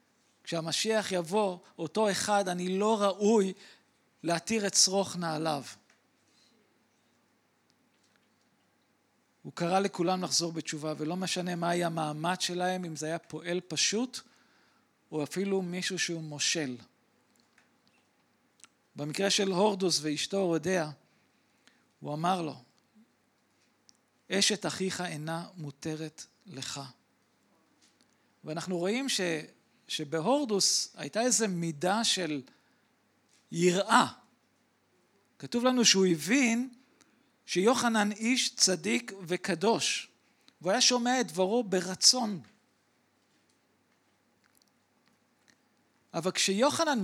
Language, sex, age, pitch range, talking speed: Hebrew, male, 40-59, 170-225 Hz, 90 wpm